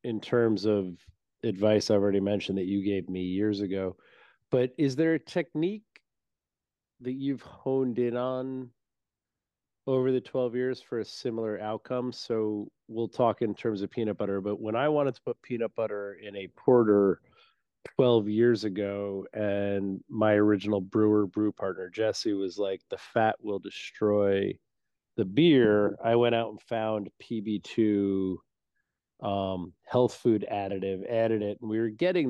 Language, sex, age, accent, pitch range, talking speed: English, male, 30-49, American, 100-120 Hz, 155 wpm